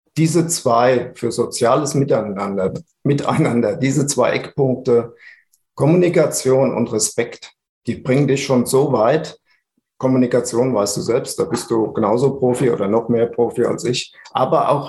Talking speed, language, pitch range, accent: 140 wpm, German, 120-140 Hz, German